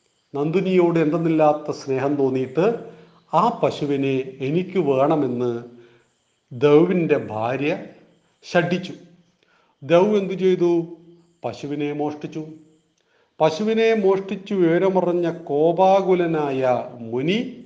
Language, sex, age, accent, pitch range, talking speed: Malayalam, male, 40-59, native, 130-175 Hz, 70 wpm